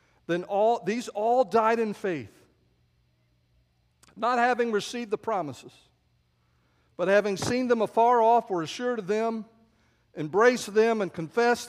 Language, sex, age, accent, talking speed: English, male, 50-69, American, 135 wpm